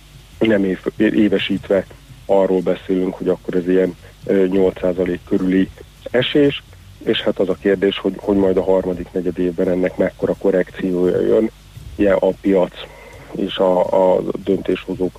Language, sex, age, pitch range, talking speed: Hungarian, male, 50-69, 90-95 Hz, 125 wpm